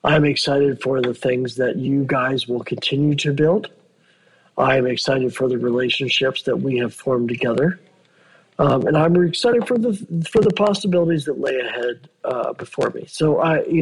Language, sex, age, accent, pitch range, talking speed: English, male, 50-69, American, 130-180 Hz, 175 wpm